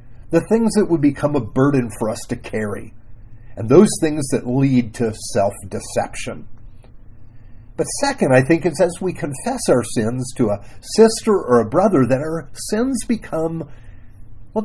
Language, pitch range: English, 115-170 Hz